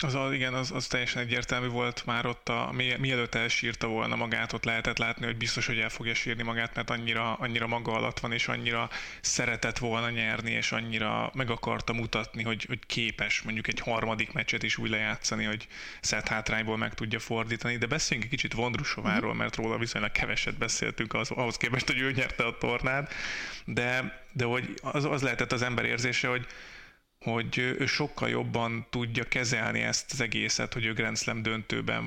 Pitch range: 115-125 Hz